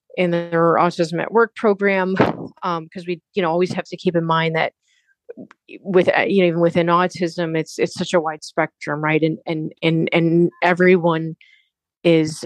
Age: 30-49